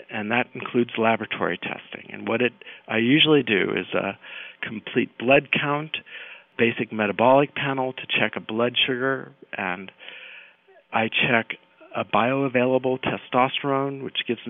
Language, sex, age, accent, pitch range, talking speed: English, male, 50-69, American, 110-135 Hz, 130 wpm